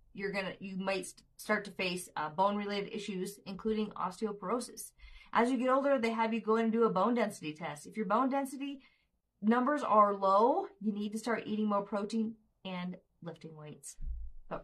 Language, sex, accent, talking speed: English, female, American, 185 wpm